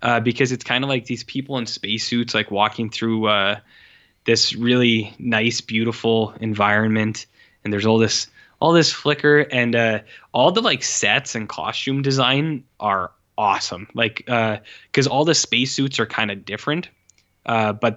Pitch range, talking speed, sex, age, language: 105-130 Hz, 165 wpm, male, 10-29, English